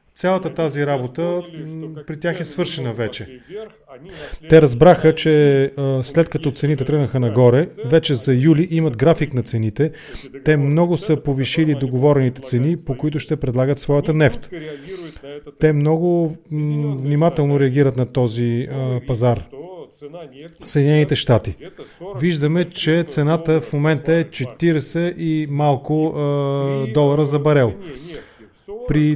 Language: English